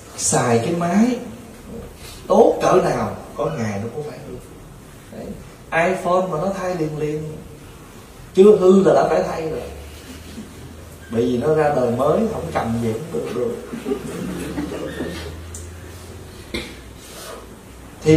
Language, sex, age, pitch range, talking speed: Vietnamese, male, 20-39, 90-145 Hz, 120 wpm